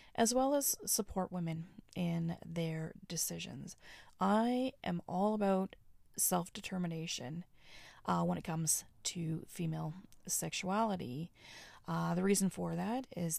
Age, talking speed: 30-49, 115 wpm